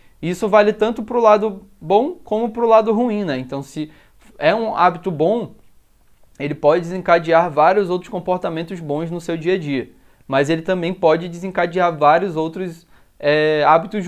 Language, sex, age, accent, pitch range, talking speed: Portuguese, male, 20-39, Brazilian, 165-215 Hz, 165 wpm